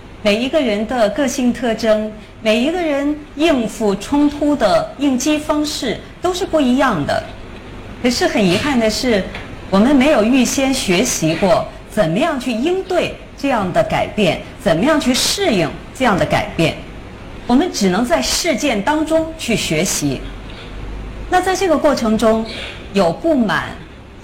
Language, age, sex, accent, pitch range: Chinese, 40-59, female, native, 205-310 Hz